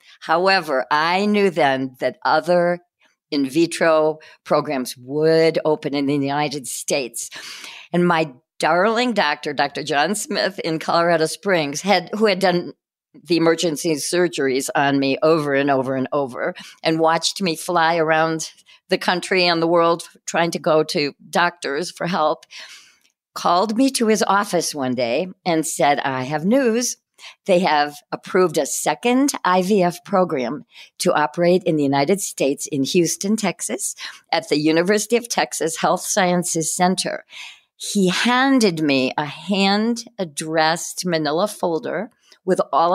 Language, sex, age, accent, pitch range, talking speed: English, female, 50-69, American, 150-190 Hz, 140 wpm